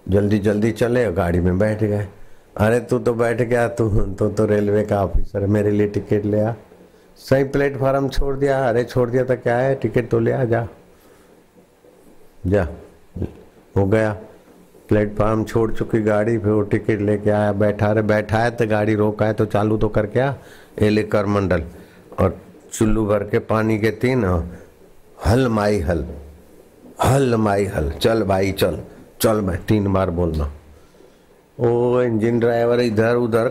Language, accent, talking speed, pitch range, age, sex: Hindi, native, 170 wpm, 105-125 Hz, 60-79, male